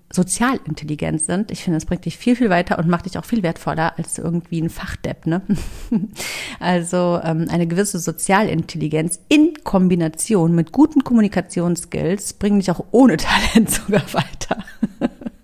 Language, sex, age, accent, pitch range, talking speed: German, female, 40-59, German, 165-200 Hz, 150 wpm